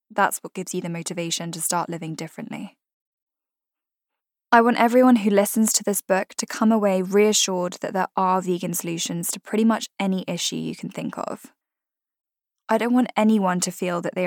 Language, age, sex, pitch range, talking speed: English, 10-29, female, 180-215 Hz, 185 wpm